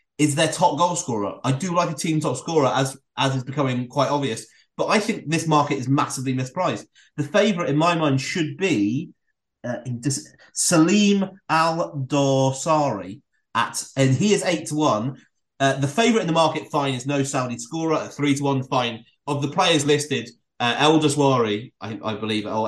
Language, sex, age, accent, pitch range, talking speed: English, male, 30-49, British, 115-150 Hz, 190 wpm